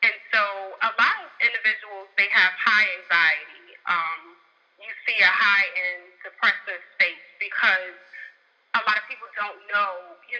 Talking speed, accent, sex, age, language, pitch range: 150 wpm, American, female, 30-49, English, 195-265 Hz